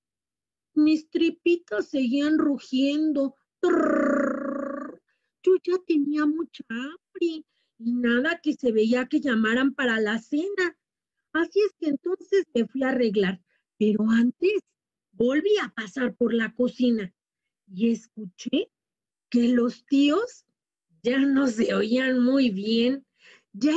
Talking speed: 120 wpm